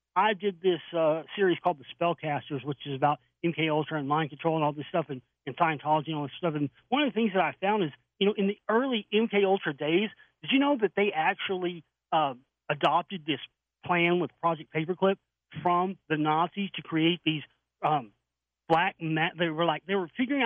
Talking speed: 210 wpm